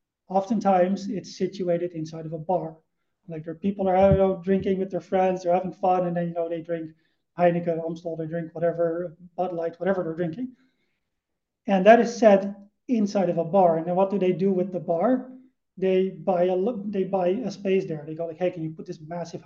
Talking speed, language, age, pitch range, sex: 210 wpm, English, 30-49, 170-195 Hz, male